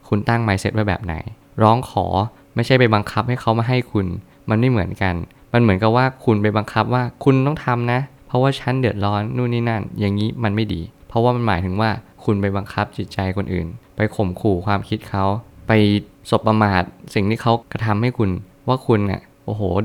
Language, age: Thai, 20-39